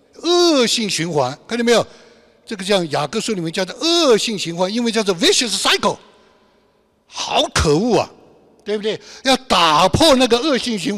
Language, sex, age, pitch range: Chinese, male, 60-79, 165-240 Hz